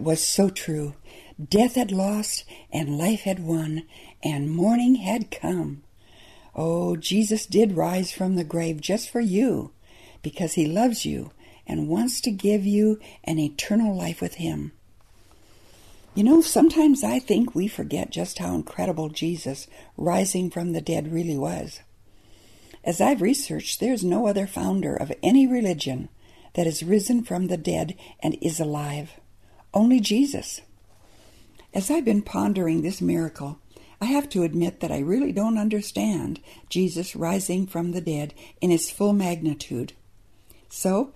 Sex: female